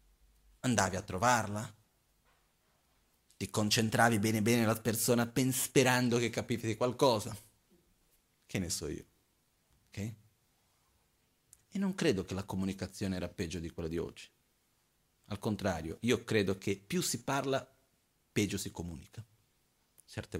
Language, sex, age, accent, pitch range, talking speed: Italian, male, 40-59, native, 95-115 Hz, 125 wpm